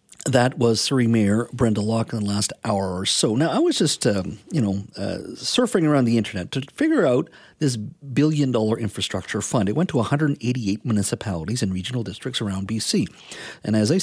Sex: male